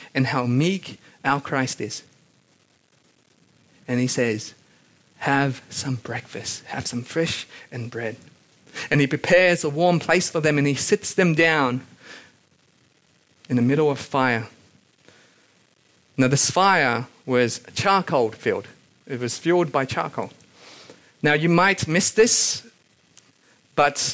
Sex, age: male, 40-59